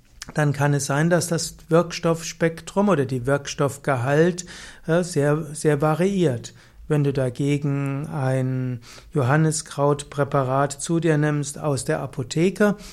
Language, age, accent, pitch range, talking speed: German, 60-79, German, 140-170 Hz, 110 wpm